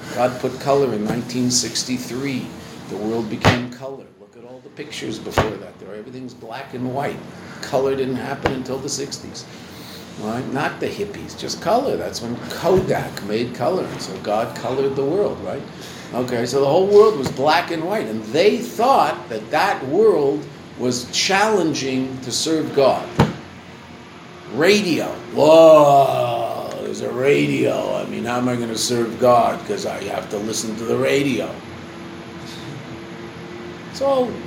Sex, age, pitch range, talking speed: male, 50-69, 120-140 Hz, 150 wpm